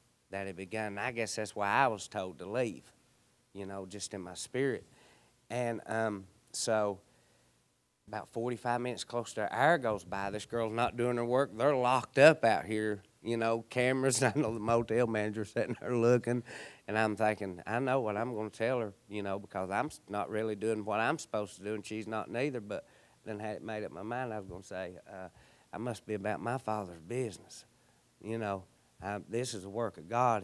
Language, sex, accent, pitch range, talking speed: English, male, American, 105-125 Hz, 215 wpm